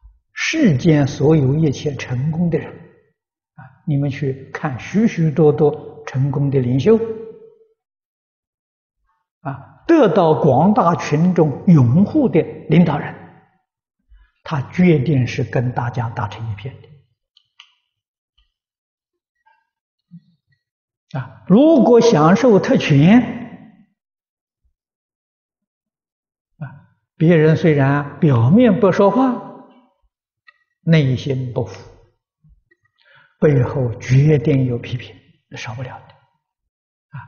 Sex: male